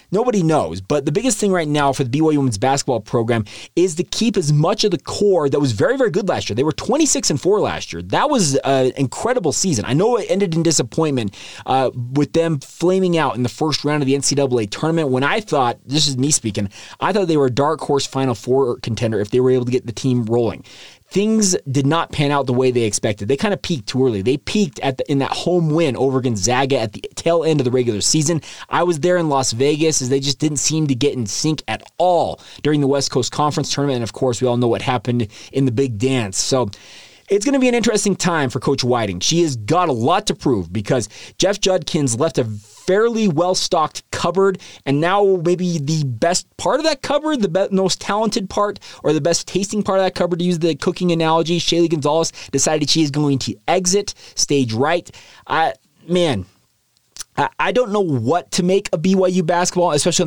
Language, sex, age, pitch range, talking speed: English, male, 20-39, 130-180 Hz, 230 wpm